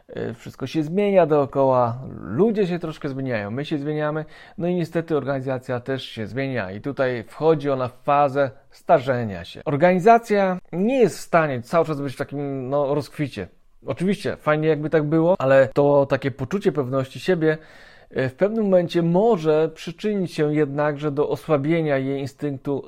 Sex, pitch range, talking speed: male, 130-165 Hz, 155 wpm